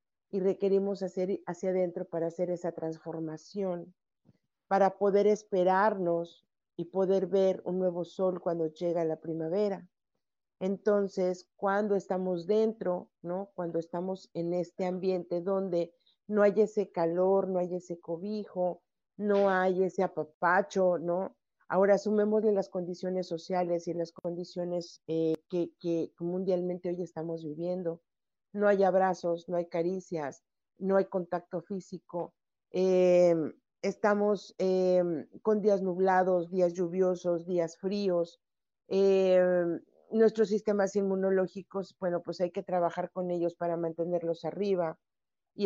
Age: 50-69